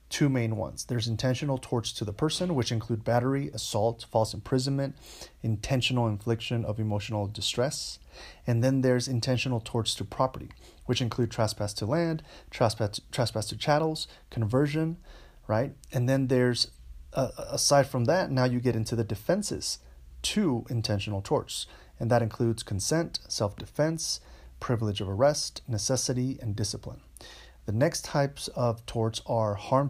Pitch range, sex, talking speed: 110-130 Hz, male, 145 wpm